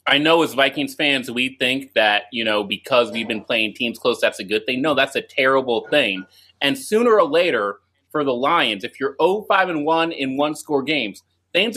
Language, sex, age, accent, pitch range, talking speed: English, male, 30-49, American, 130-195 Hz, 220 wpm